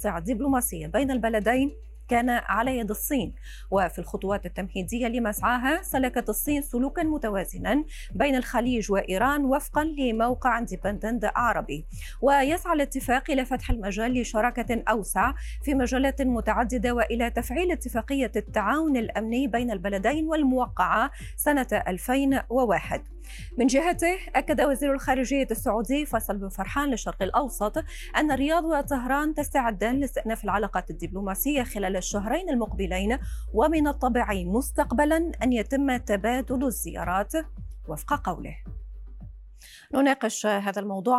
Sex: female